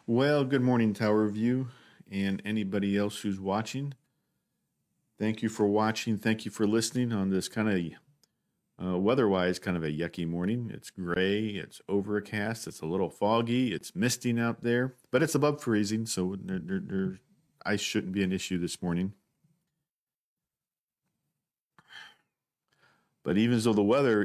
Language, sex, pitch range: English, male, 90-110 Hz